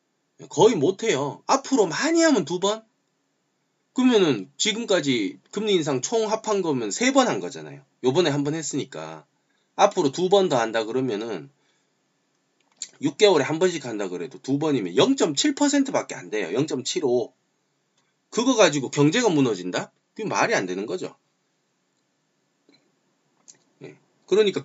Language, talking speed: English, 110 wpm